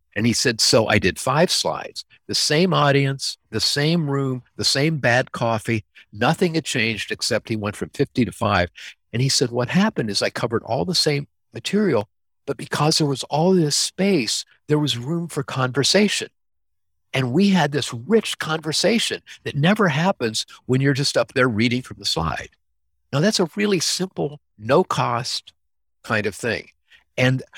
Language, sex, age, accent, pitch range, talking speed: English, male, 50-69, American, 110-150 Hz, 175 wpm